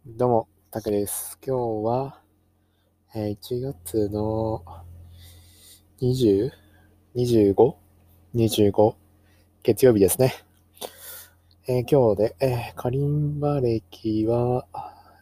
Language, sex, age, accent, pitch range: Japanese, male, 20-39, native, 95-115 Hz